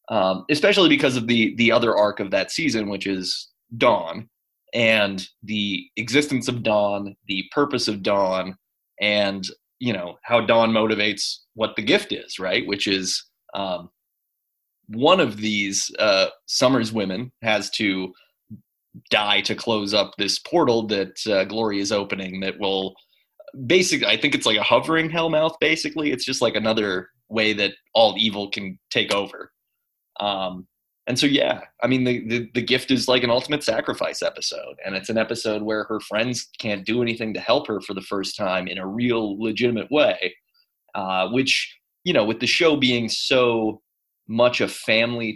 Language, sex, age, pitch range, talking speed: English, male, 20-39, 100-125 Hz, 170 wpm